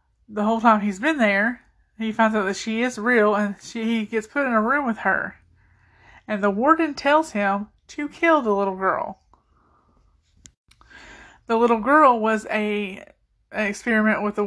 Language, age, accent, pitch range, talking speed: English, 20-39, American, 200-235 Hz, 165 wpm